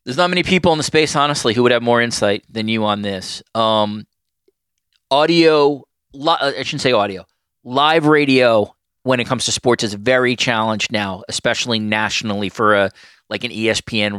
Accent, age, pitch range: American, 30-49, 105-130 Hz